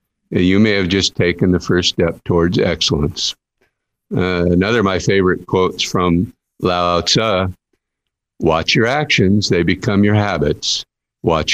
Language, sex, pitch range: English, male, 85-100 Hz